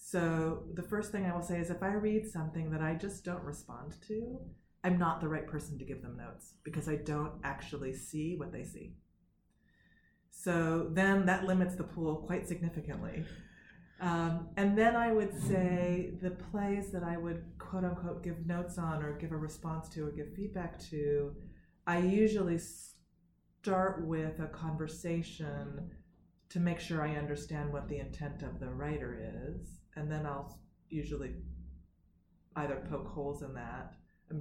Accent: American